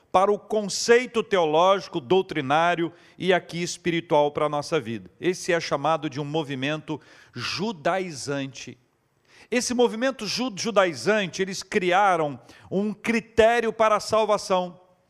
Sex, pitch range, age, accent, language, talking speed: male, 170-230 Hz, 50-69, Brazilian, Portuguese, 115 wpm